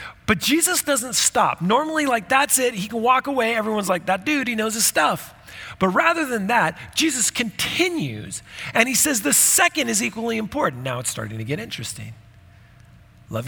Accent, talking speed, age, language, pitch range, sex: American, 185 wpm, 40-59, English, 130-215 Hz, male